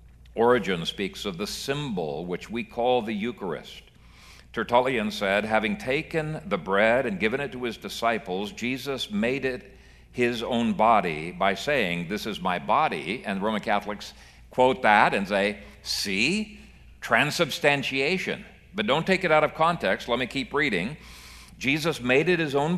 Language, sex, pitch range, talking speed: English, male, 100-135 Hz, 155 wpm